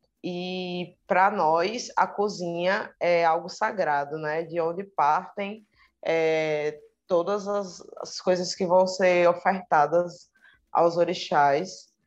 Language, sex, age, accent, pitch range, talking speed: Portuguese, female, 20-39, Brazilian, 175-205 Hz, 115 wpm